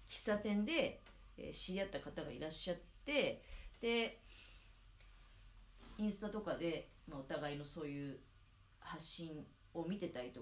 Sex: female